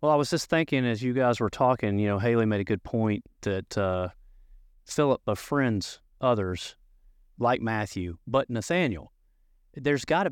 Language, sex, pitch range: English, male, 105-135 Hz